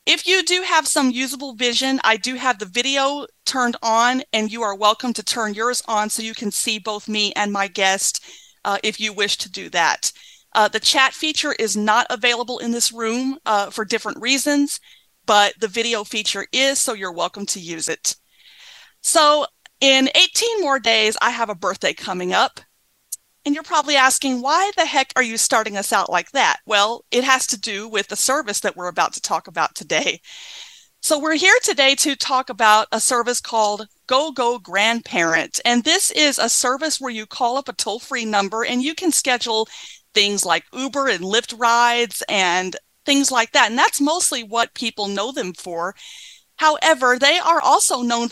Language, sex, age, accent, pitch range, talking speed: English, female, 30-49, American, 210-275 Hz, 190 wpm